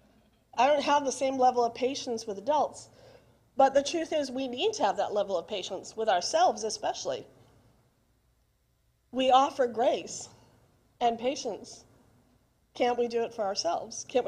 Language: English